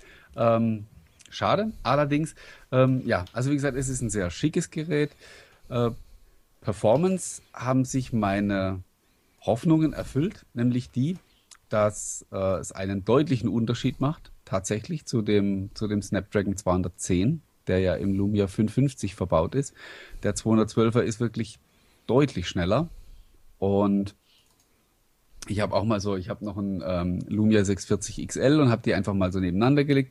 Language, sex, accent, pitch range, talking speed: German, male, German, 100-130 Hz, 140 wpm